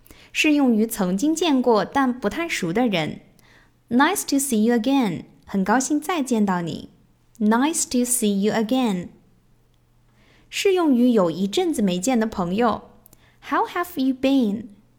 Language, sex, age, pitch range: Chinese, female, 10-29, 195-255 Hz